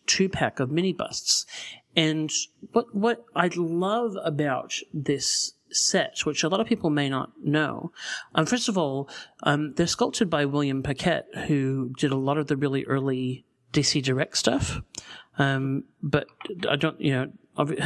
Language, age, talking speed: English, 40-59, 160 wpm